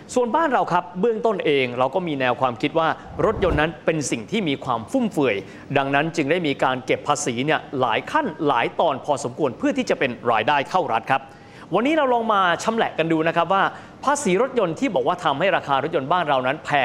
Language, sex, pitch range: Thai, male, 150-230 Hz